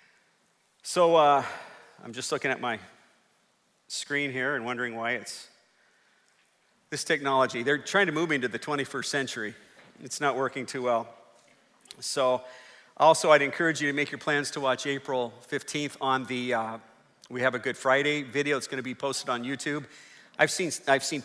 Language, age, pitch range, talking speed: English, 40-59, 130-150 Hz, 170 wpm